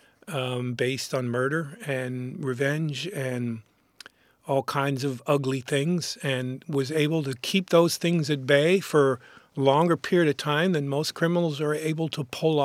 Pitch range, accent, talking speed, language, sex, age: 130-155 Hz, American, 160 wpm, English, male, 50-69